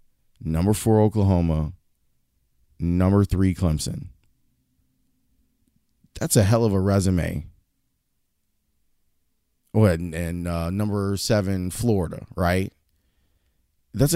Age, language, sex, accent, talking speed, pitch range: 30-49, English, male, American, 90 wpm, 85-110 Hz